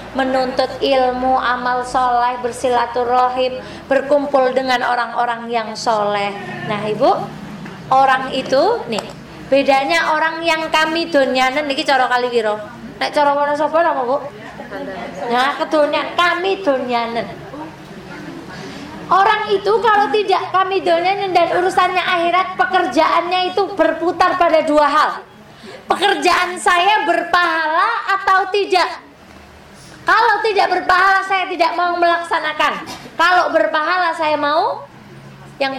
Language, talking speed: Indonesian, 105 wpm